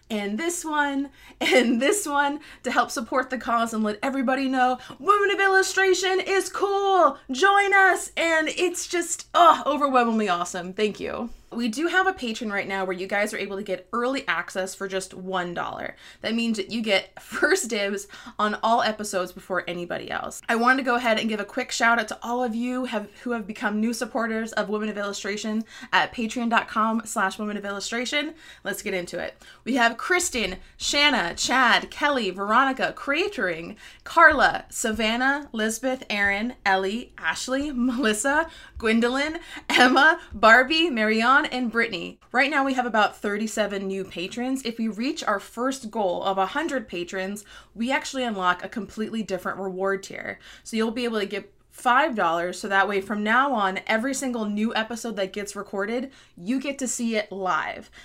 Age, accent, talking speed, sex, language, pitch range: 20-39, American, 175 wpm, female, English, 205-280 Hz